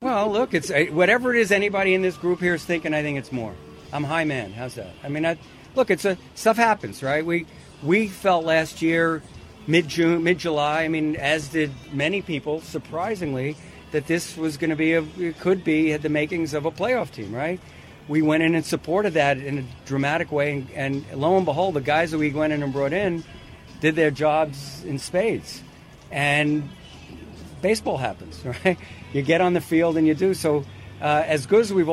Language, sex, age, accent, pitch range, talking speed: English, male, 50-69, American, 140-165 Hz, 210 wpm